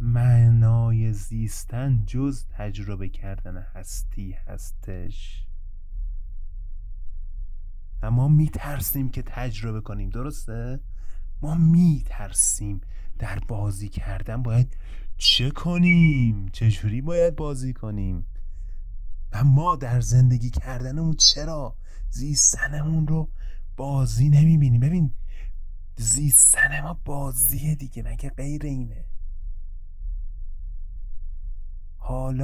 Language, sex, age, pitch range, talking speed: Persian, male, 30-49, 90-125 Hz, 85 wpm